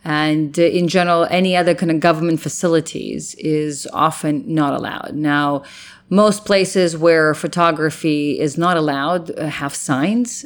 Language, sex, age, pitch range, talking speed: English, female, 30-49, 150-175 Hz, 145 wpm